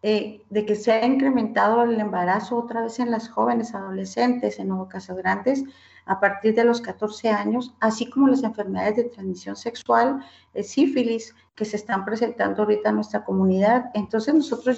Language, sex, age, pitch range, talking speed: Spanish, female, 40-59, 215-255 Hz, 175 wpm